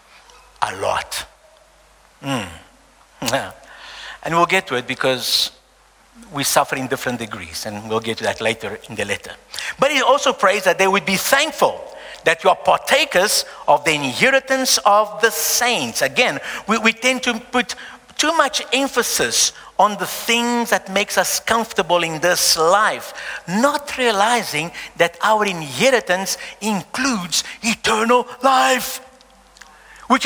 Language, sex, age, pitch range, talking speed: English, male, 50-69, 175-260 Hz, 140 wpm